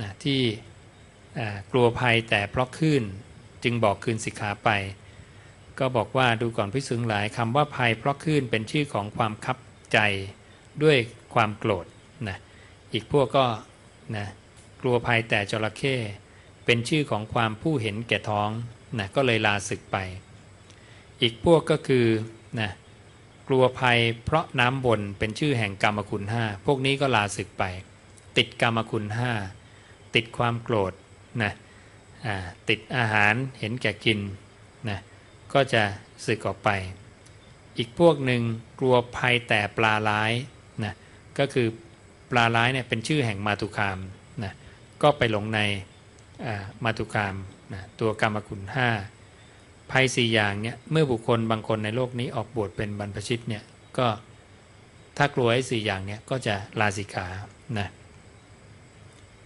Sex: male